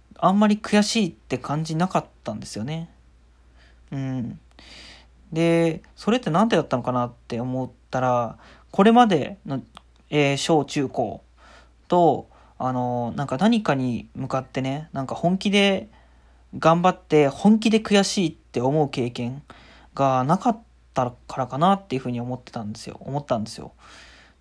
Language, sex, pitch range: Japanese, male, 120-165 Hz